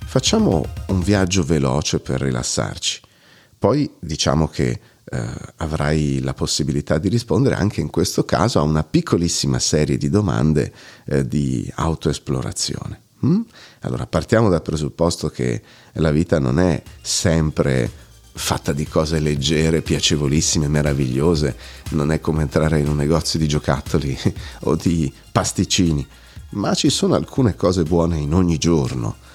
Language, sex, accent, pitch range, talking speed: Italian, male, native, 70-95 Hz, 135 wpm